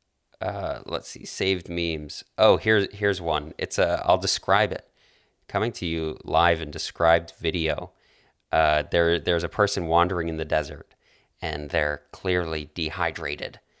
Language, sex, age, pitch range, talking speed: English, male, 30-49, 80-100 Hz, 150 wpm